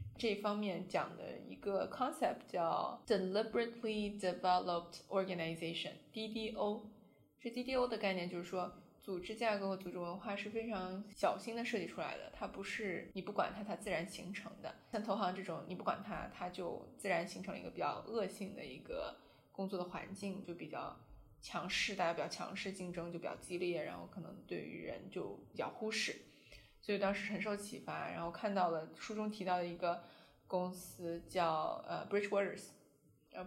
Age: 20-39